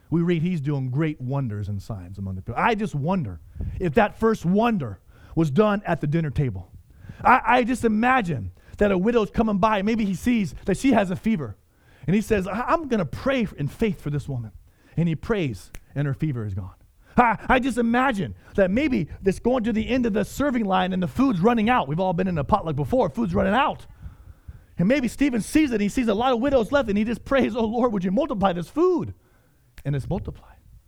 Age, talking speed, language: 30-49, 230 wpm, English